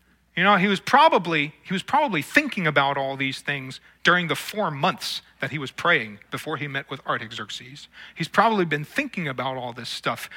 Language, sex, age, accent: English, male, 40-59, American